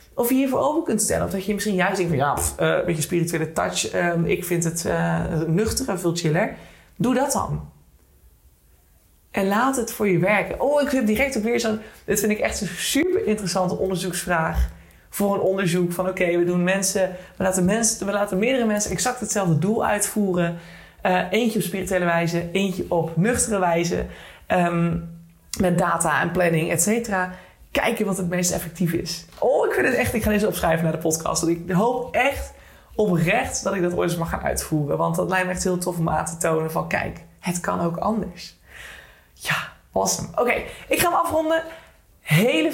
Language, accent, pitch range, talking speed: Dutch, Dutch, 165-210 Hz, 200 wpm